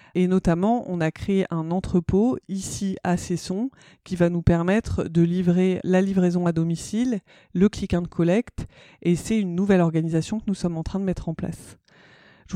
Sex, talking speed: female, 180 wpm